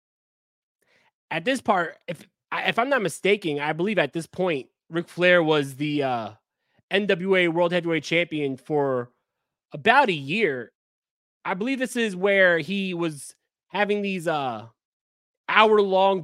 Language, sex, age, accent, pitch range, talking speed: English, male, 20-39, American, 145-185 Hz, 135 wpm